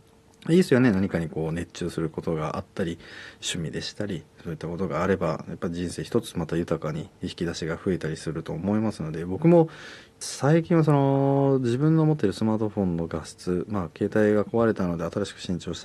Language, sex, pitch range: Japanese, male, 85-115 Hz